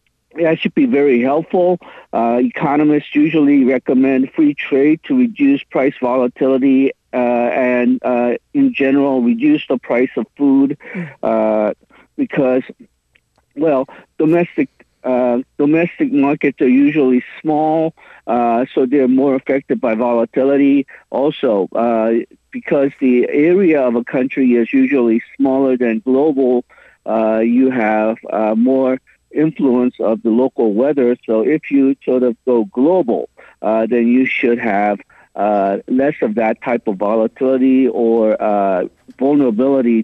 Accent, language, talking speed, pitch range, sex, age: American, English, 130 wpm, 120-145 Hz, male, 50-69